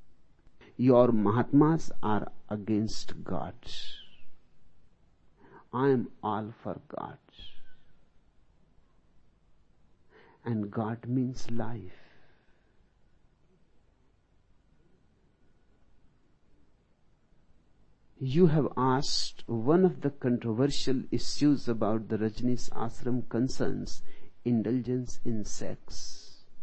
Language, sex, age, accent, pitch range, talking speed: Hindi, male, 60-79, native, 105-135 Hz, 70 wpm